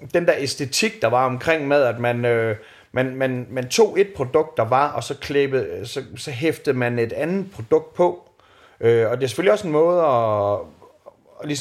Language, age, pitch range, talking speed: Danish, 30-49, 115-150 Hz, 190 wpm